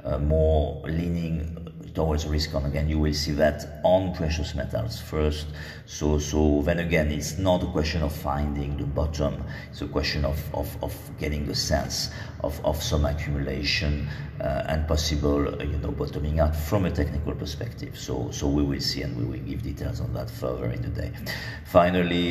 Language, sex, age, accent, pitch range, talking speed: French, male, 50-69, French, 70-80 Hz, 185 wpm